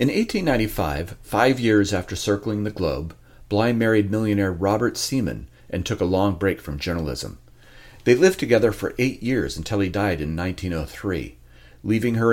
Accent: American